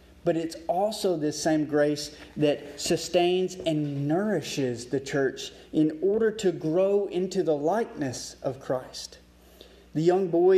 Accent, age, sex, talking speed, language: American, 30-49, male, 135 wpm, English